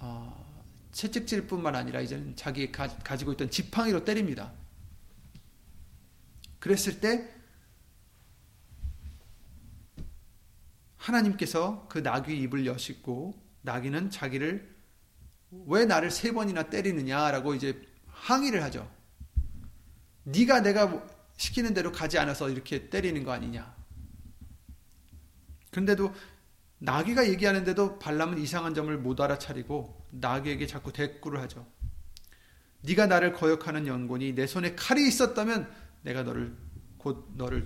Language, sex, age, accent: Korean, male, 30-49, native